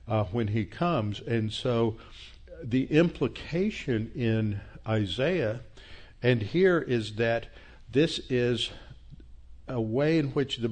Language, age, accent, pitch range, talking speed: English, 60-79, American, 110-145 Hz, 120 wpm